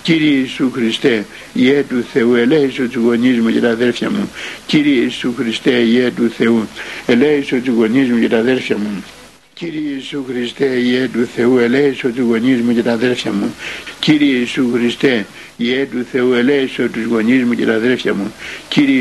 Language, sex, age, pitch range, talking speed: Greek, male, 60-79, 120-130 Hz, 45 wpm